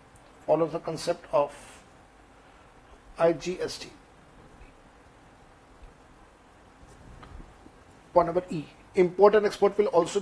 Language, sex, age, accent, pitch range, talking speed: Hindi, male, 50-69, native, 160-185 Hz, 75 wpm